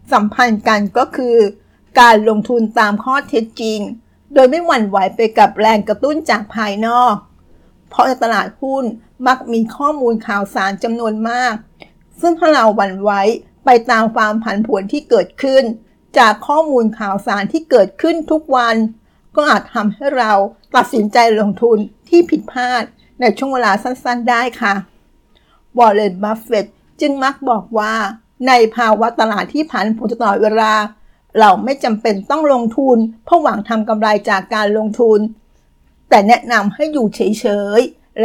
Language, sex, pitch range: Thai, female, 215-250 Hz